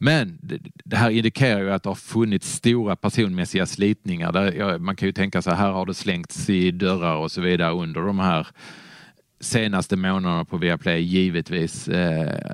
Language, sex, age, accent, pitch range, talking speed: Swedish, male, 30-49, Norwegian, 90-105 Hz, 165 wpm